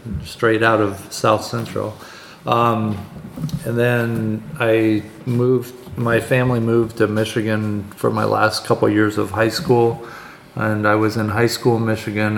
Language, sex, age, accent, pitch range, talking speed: English, male, 40-59, American, 100-115 Hz, 150 wpm